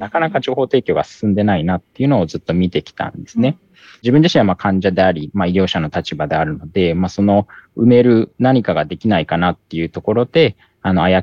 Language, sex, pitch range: Japanese, male, 85-120 Hz